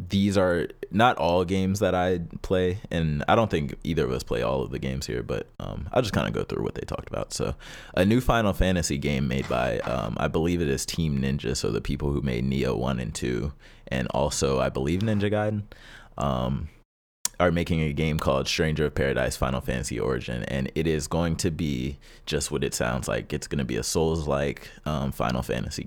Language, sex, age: English, male, 20-39